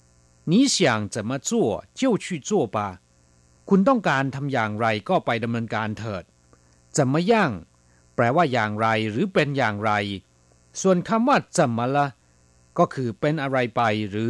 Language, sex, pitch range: Thai, male, 95-145 Hz